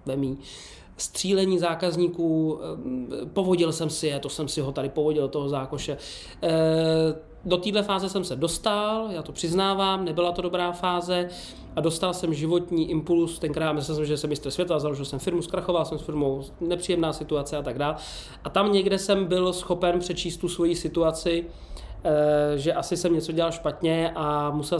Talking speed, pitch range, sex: 160 wpm, 145-175 Hz, male